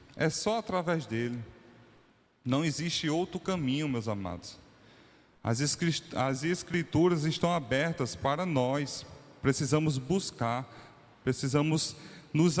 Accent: Brazilian